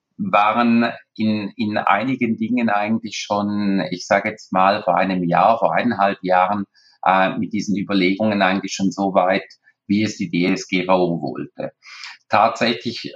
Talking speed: 140 wpm